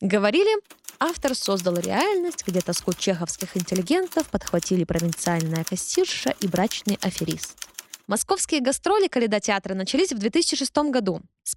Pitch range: 185-265 Hz